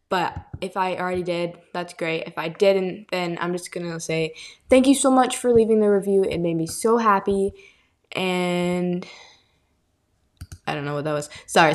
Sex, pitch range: female, 170-220 Hz